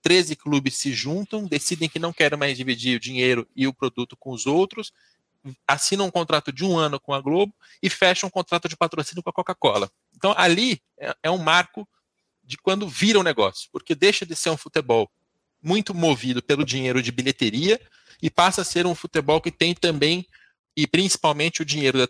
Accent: Brazilian